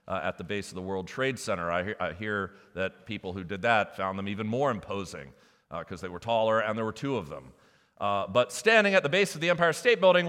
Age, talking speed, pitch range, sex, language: 40-59, 260 wpm, 130-195 Hz, male, English